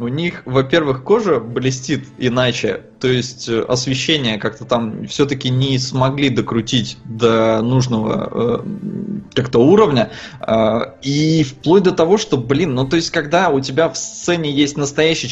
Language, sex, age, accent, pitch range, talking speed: Russian, male, 20-39, native, 125-160 Hz, 140 wpm